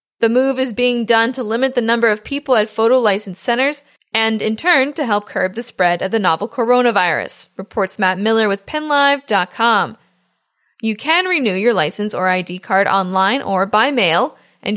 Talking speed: 185 wpm